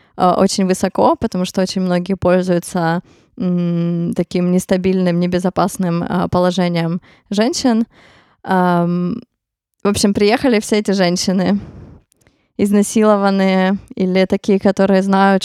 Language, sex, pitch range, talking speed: Ukrainian, female, 180-200 Hz, 100 wpm